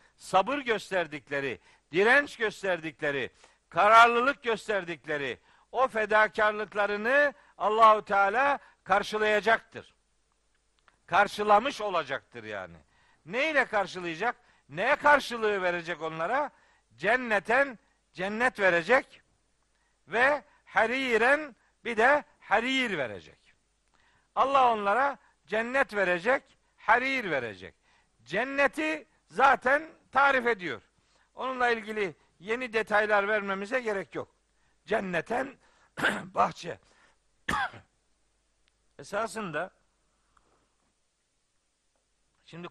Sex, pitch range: male, 175-245 Hz